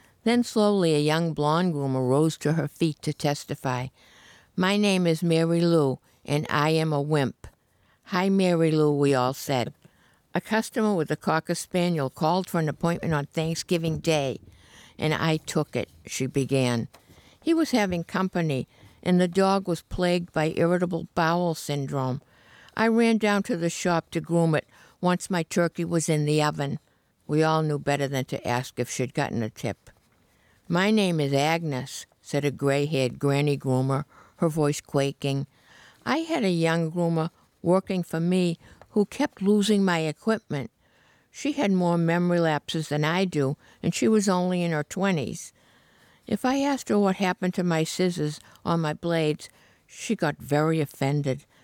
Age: 60-79